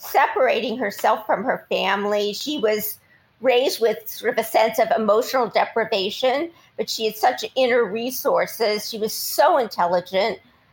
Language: English